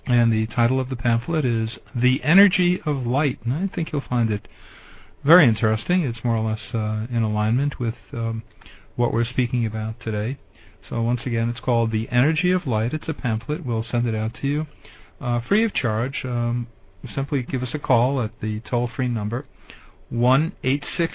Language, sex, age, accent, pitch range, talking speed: English, male, 50-69, American, 110-145 Hz, 200 wpm